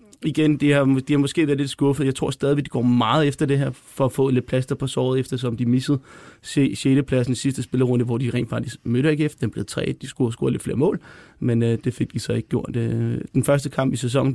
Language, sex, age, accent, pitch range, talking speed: Danish, male, 30-49, native, 115-135 Hz, 280 wpm